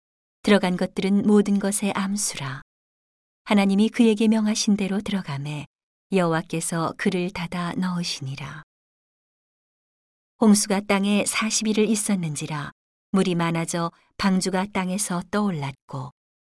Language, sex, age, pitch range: Korean, female, 40-59, 170-205 Hz